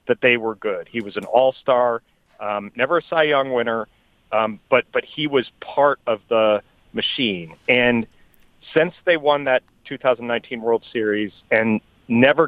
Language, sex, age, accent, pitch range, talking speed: English, male, 40-59, American, 110-130 Hz, 160 wpm